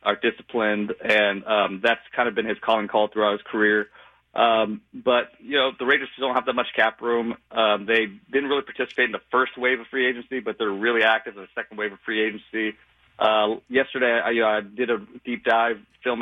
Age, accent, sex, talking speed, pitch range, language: 30-49, American, male, 220 wpm, 105-125 Hz, English